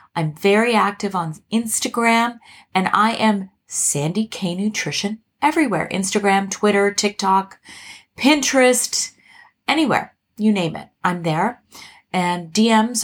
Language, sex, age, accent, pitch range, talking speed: English, female, 30-49, American, 180-235 Hz, 110 wpm